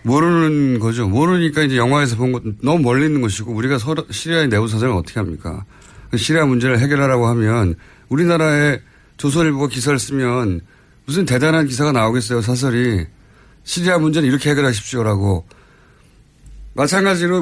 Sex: male